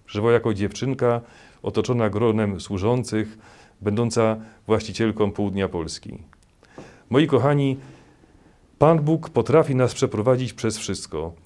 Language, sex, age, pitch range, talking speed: Polish, male, 40-59, 100-130 Hz, 100 wpm